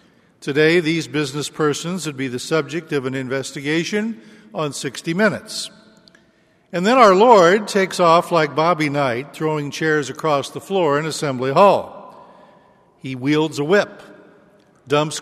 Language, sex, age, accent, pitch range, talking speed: English, male, 60-79, American, 135-180 Hz, 140 wpm